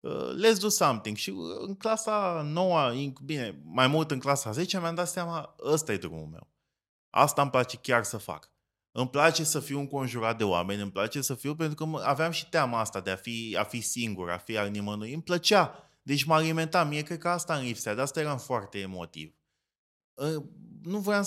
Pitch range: 105-170 Hz